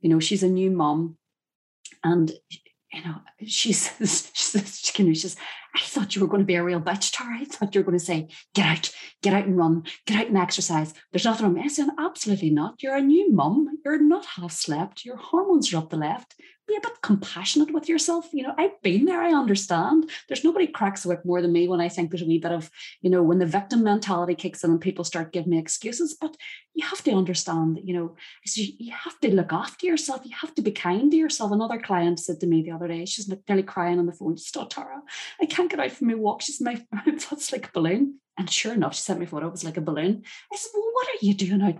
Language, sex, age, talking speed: English, female, 30-49, 255 wpm